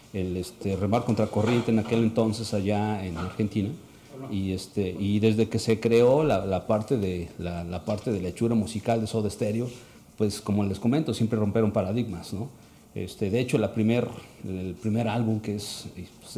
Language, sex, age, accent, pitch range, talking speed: Spanish, male, 50-69, Mexican, 100-120 Hz, 175 wpm